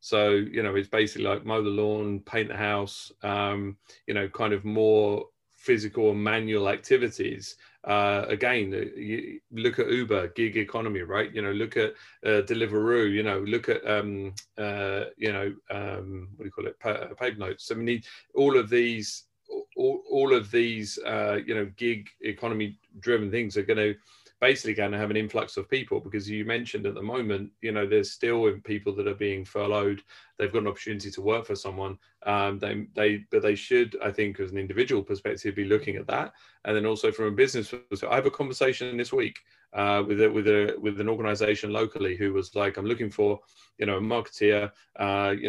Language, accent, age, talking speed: English, British, 30-49, 205 wpm